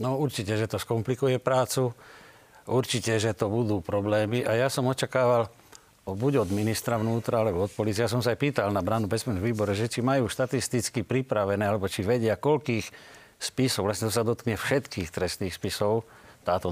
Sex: male